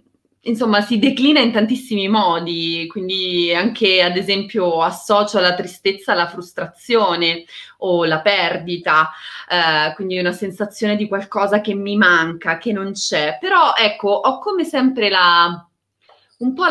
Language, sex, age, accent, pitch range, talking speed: Italian, female, 20-39, native, 175-235 Hz, 135 wpm